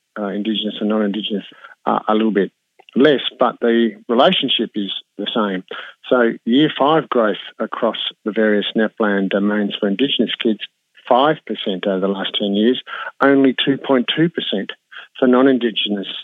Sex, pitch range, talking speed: male, 105-125 Hz, 140 wpm